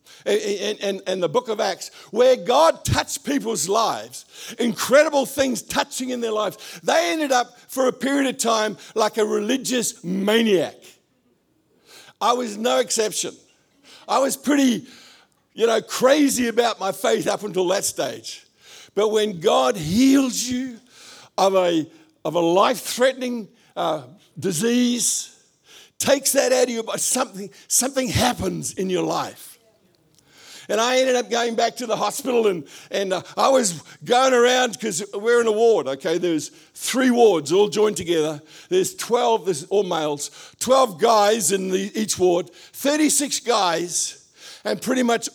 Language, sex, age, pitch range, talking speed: English, male, 50-69, 185-250 Hz, 150 wpm